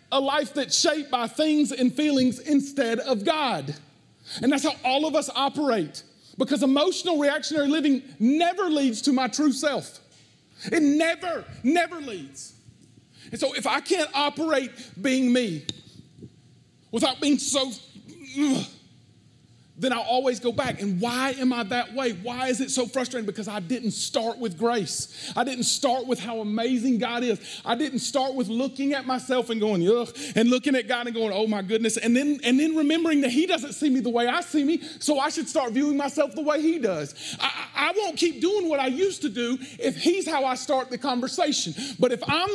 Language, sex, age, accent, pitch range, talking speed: English, male, 40-59, American, 230-290 Hz, 195 wpm